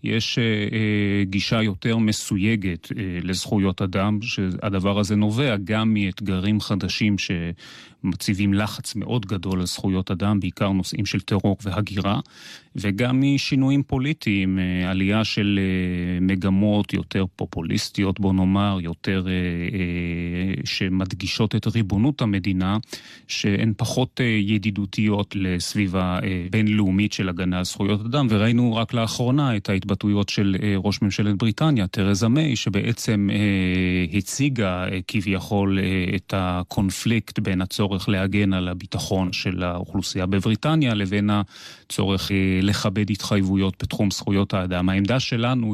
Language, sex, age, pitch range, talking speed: Hebrew, male, 30-49, 95-110 Hz, 120 wpm